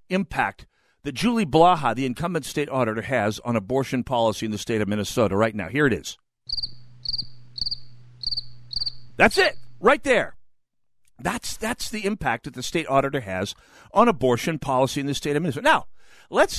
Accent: American